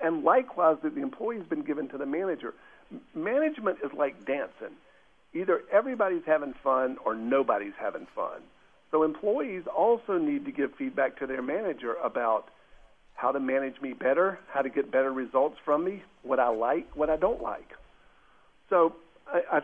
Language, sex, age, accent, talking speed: English, male, 50-69, American, 165 wpm